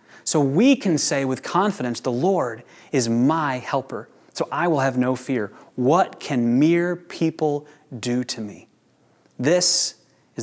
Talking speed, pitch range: 150 wpm, 130-170 Hz